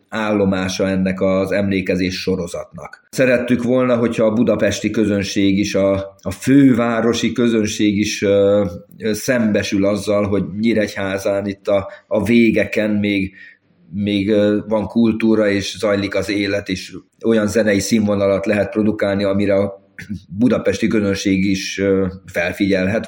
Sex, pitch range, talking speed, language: male, 95-110 Hz, 110 wpm, Hungarian